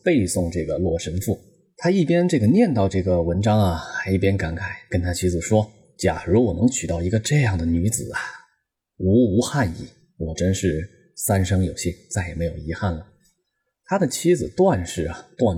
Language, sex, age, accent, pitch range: Chinese, male, 20-39, native, 90-130 Hz